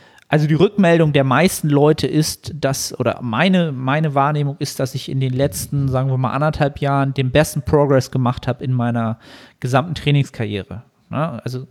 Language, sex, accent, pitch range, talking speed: German, male, German, 125-150 Hz, 175 wpm